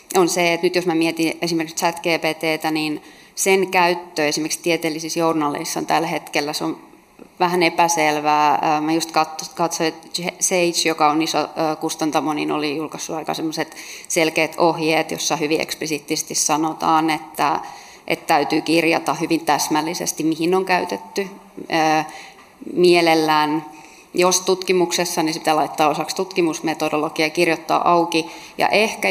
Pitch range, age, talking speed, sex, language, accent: 155-175 Hz, 30-49, 130 wpm, female, Finnish, native